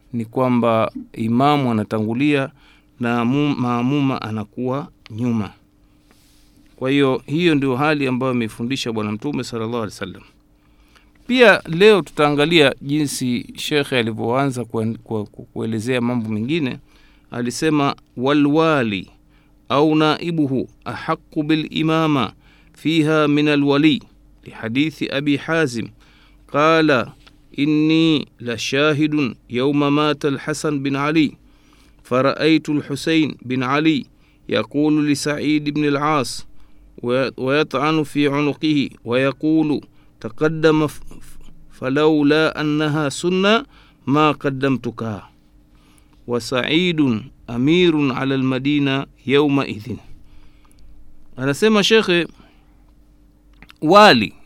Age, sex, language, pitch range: 50-69, male, Swahili, 120-155 Hz